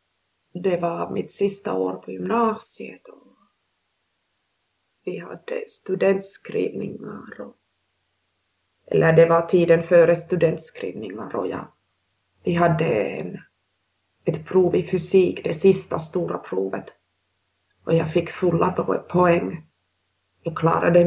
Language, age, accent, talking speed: Finnish, 30-49, native, 95 wpm